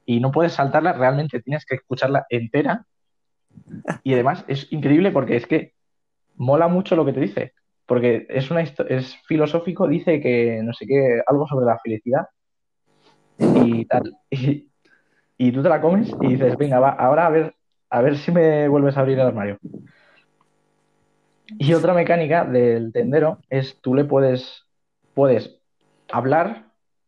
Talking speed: 160 wpm